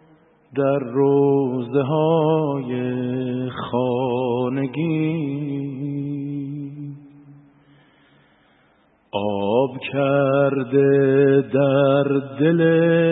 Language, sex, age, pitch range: Persian, male, 50-69, 135-160 Hz